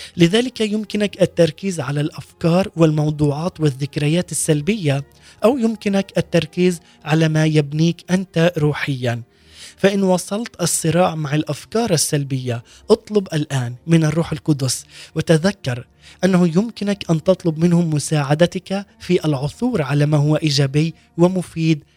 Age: 20-39